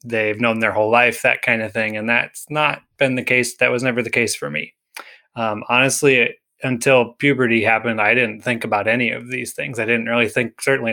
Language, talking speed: English, 220 wpm